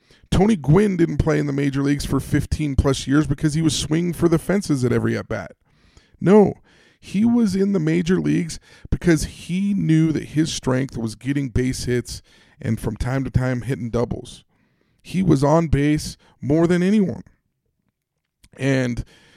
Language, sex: English, male